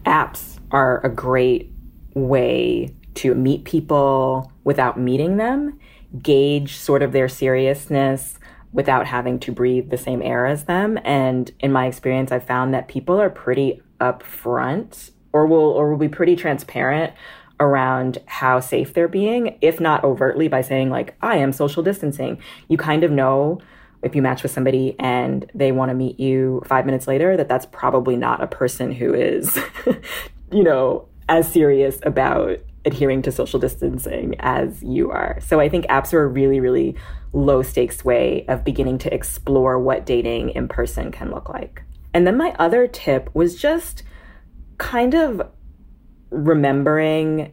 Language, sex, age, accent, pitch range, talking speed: English, female, 20-39, American, 130-165 Hz, 160 wpm